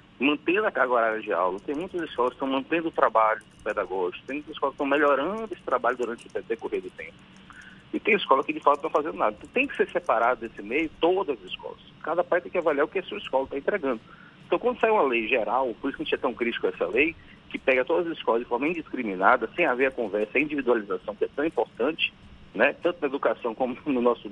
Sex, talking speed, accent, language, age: male, 250 wpm, Brazilian, Portuguese, 40-59